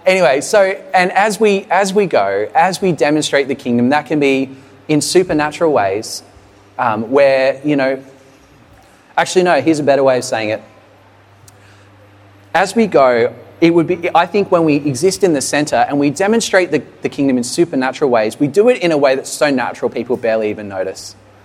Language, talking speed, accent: English, 190 wpm, Australian